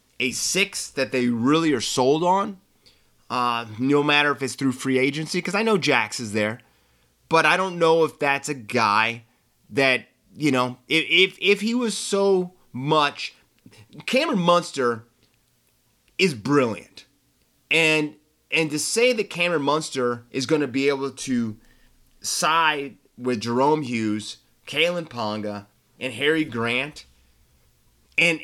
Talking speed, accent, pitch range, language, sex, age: 140 wpm, American, 120-165 Hz, English, male, 30-49